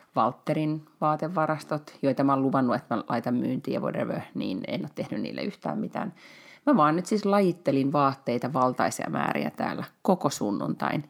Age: 30-49